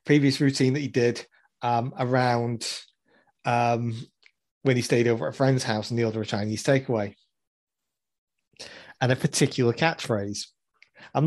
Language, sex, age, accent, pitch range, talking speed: English, male, 30-49, British, 115-135 Hz, 145 wpm